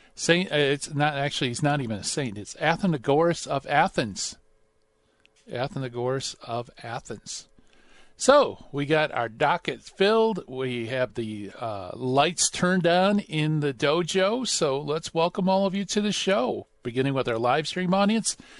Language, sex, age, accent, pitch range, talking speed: English, male, 40-59, American, 125-175 Hz, 150 wpm